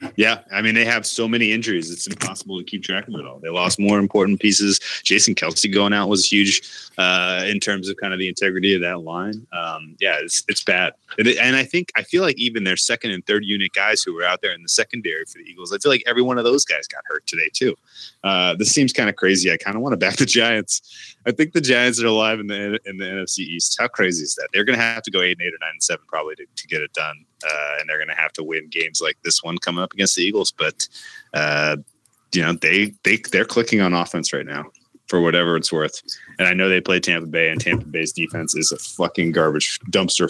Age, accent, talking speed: 20-39, American, 260 wpm